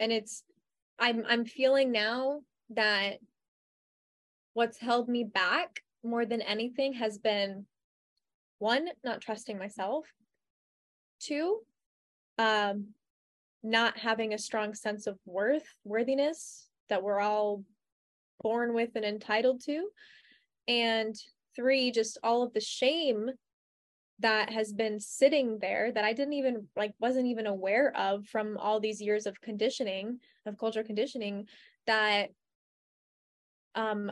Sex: female